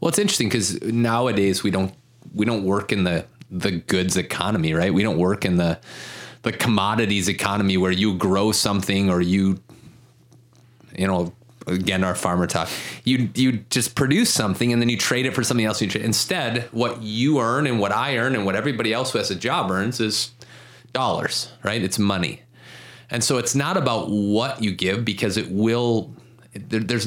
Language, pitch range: English, 95-120 Hz